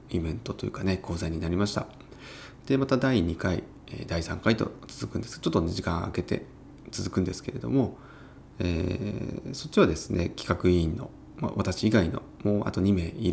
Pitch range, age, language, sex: 90-130 Hz, 30-49, Japanese, male